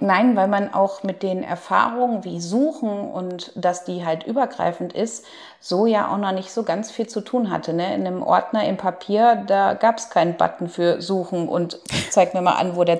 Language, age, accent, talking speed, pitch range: German, 30-49, German, 210 wpm, 175-215 Hz